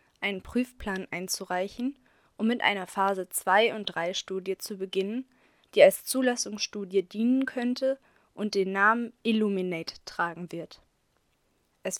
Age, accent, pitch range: 20-39, German, 195-235 Hz